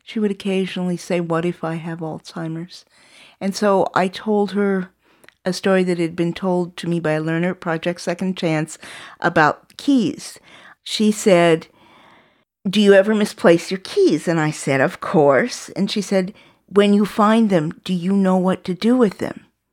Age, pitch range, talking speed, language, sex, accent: 50-69, 165-200 Hz, 180 wpm, English, female, American